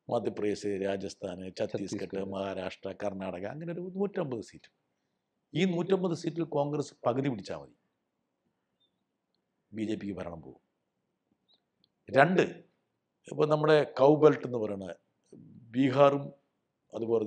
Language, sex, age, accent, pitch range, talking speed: Malayalam, male, 60-79, native, 105-175 Hz, 100 wpm